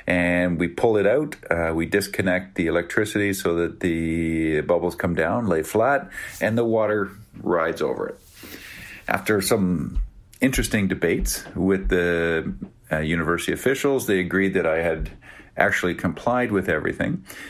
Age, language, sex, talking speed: 50-69, English, male, 145 wpm